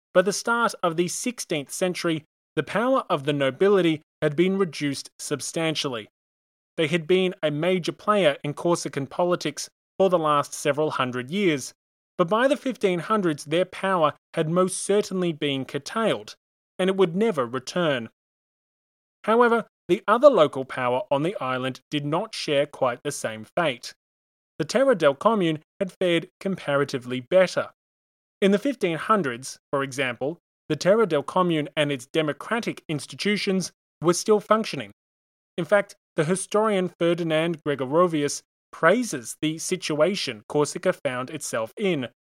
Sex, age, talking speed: male, 20-39, 140 wpm